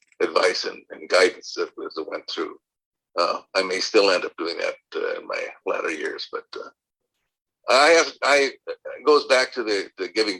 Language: English